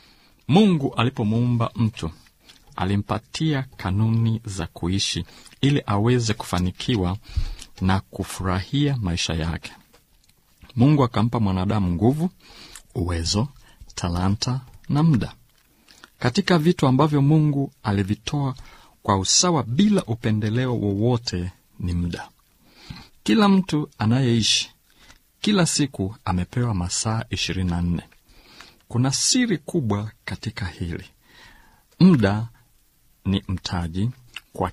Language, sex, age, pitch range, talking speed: Swahili, male, 50-69, 95-130 Hz, 90 wpm